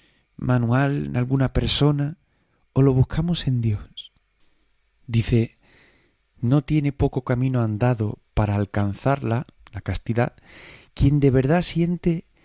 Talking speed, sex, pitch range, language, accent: 110 wpm, male, 110-135 Hz, Spanish, Spanish